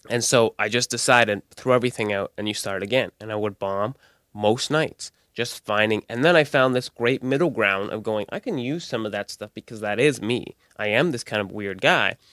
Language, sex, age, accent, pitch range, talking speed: English, male, 20-39, American, 105-125 Hz, 235 wpm